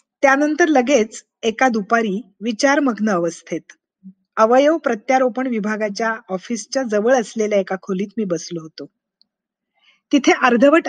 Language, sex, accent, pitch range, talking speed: Marathi, female, native, 210-265 Hz, 85 wpm